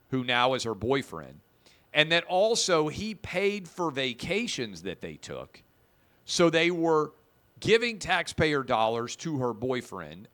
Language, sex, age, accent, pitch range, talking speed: English, male, 50-69, American, 125-175 Hz, 140 wpm